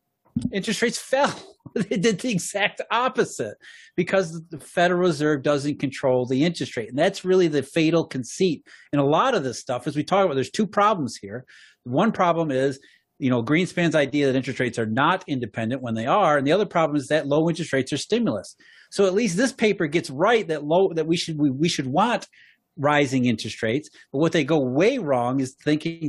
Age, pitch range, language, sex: 30-49, 140-185 Hz, English, male